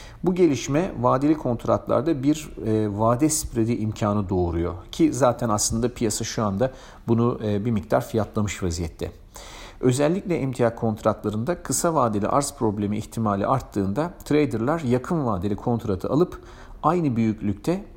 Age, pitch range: 50-69, 105-135 Hz